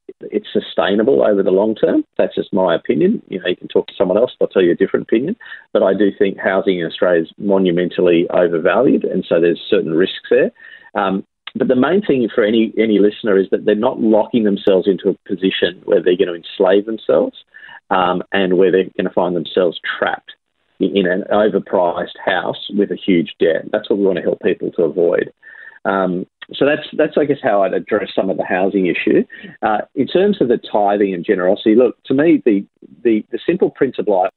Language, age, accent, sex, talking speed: English, 40-59, Australian, male, 215 wpm